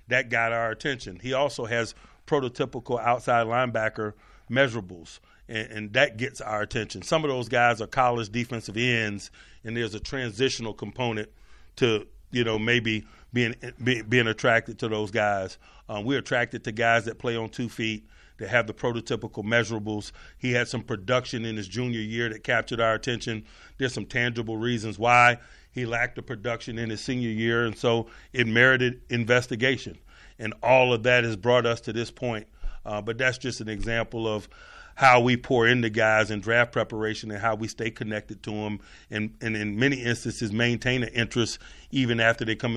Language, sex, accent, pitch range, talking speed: English, male, American, 110-125 Hz, 185 wpm